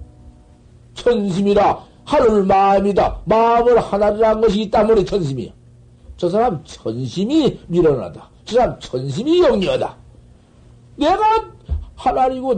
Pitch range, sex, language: 170-235 Hz, male, Korean